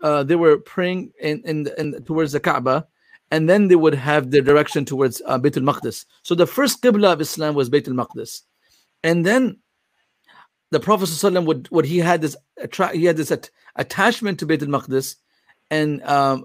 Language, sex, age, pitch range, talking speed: English, male, 40-59, 155-195 Hz, 185 wpm